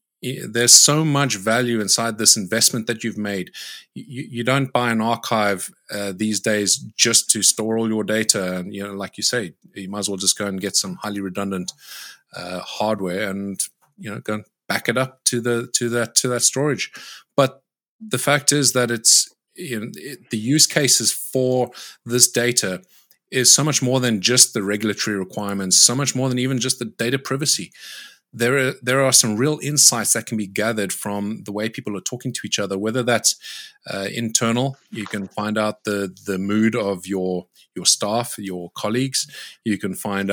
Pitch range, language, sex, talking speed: 100-125 Hz, English, male, 195 wpm